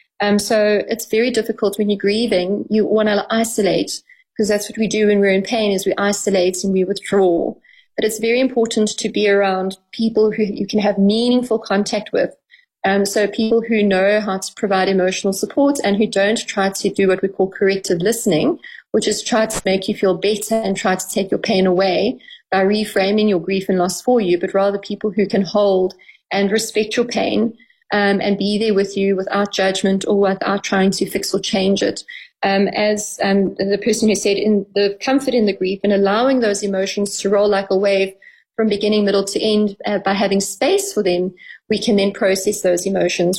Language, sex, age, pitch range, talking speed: English, female, 30-49, 195-215 Hz, 210 wpm